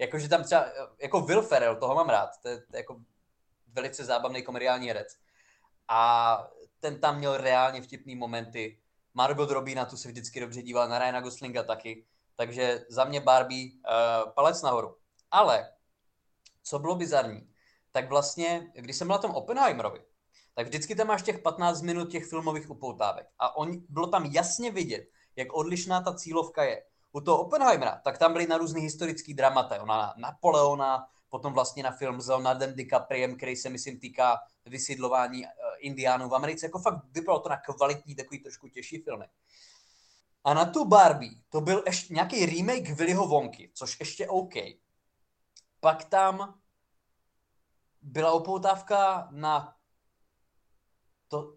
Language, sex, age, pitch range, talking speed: Czech, male, 20-39, 125-165 Hz, 155 wpm